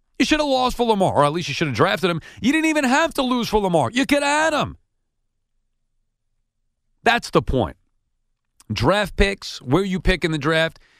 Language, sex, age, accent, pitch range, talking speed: English, male, 40-59, American, 115-170 Hz, 200 wpm